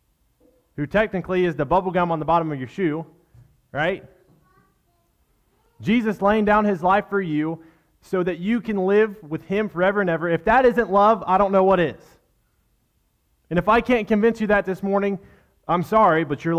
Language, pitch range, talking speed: English, 140-200 Hz, 190 wpm